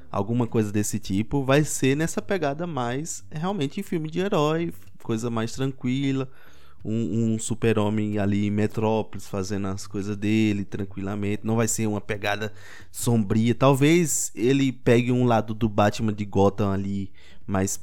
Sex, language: male, Portuguese